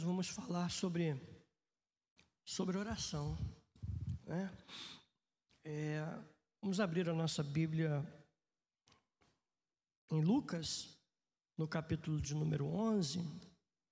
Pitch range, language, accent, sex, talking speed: 160-220 Hz, Portuguese, Brazilian, male, 80 wpm